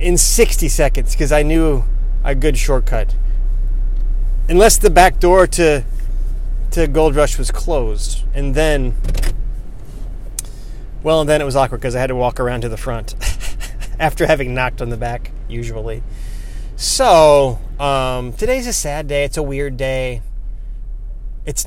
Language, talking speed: English, 145 wpm